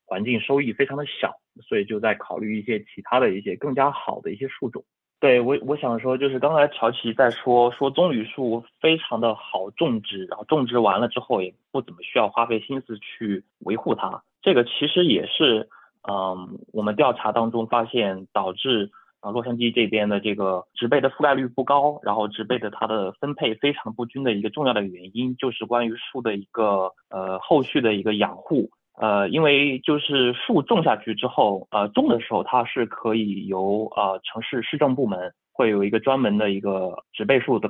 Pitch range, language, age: 105-130 Hz, Chinese, 20-39